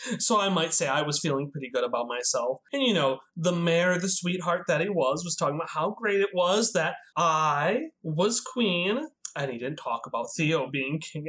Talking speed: 215 wpm